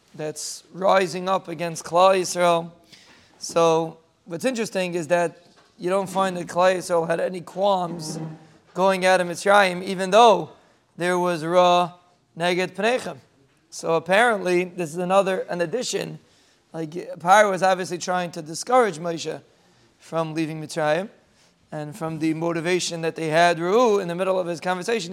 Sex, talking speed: male, 145 wpm